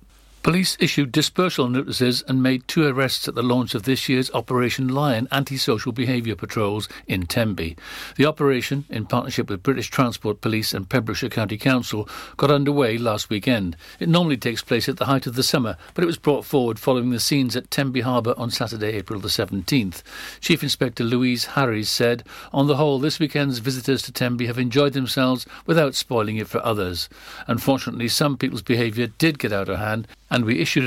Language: English